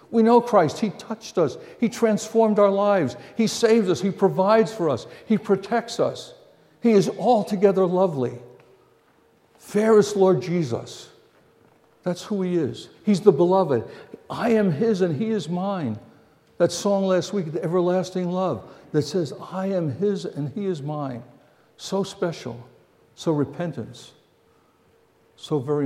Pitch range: 145-195 Hz